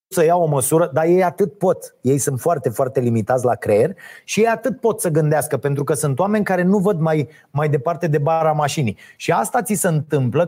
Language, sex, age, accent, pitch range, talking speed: Romanian, male, 30-49, native, 160-235 Hz, 225 wpm